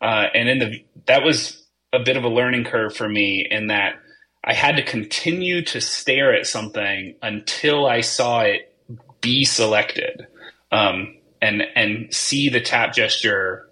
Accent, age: American, 30-49